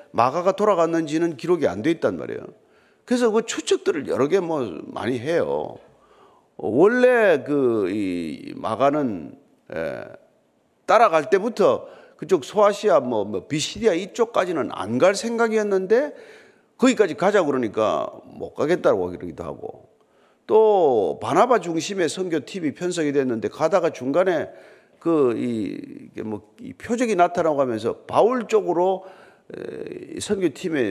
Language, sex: Korean, male